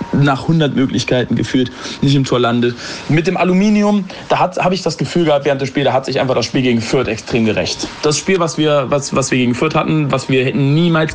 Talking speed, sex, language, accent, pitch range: 235 wpm, male, German, German, 115-145 Hz